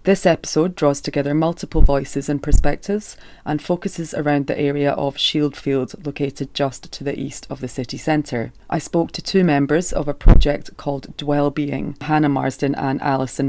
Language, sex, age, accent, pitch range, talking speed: English, female, 30-49, British, 140-155 Hz, 170 wpm